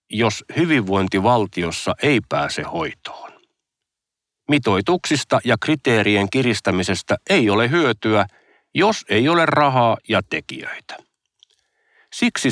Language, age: Finnish, 50-69